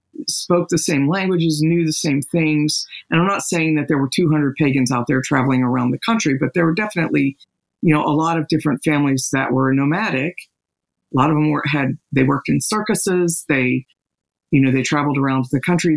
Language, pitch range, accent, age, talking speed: English, 130-160 Hz, American, 50-69, 205 wpm